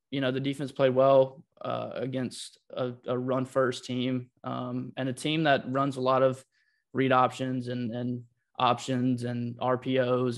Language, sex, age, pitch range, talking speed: English, male, 20-39, 125-135 Hz, 160 wpm